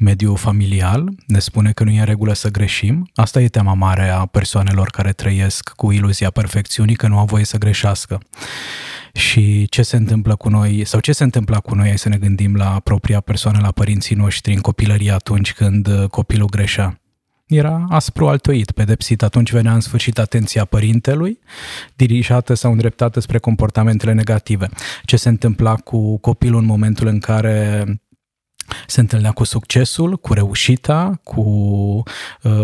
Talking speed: 160 wpm